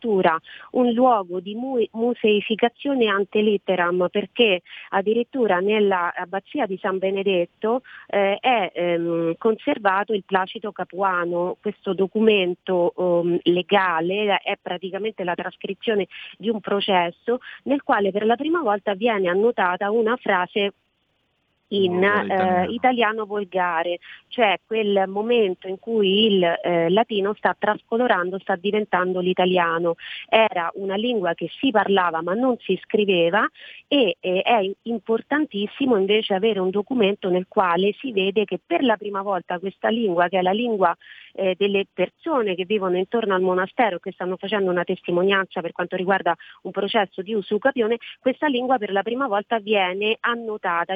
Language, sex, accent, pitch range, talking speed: Italian, female, native, 185-225 Hz, 135 wpm